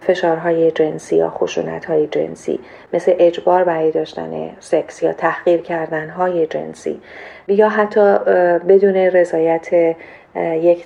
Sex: female